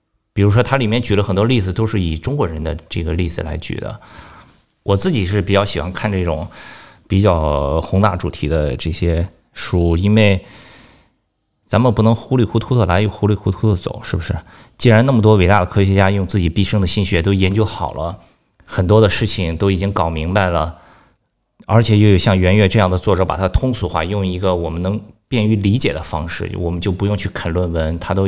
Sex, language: male, Chinese